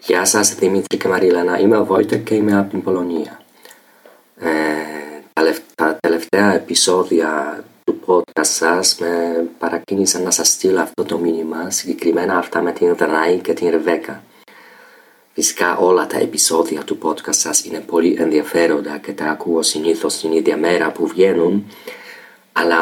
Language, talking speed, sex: Greek, 145 wpm, male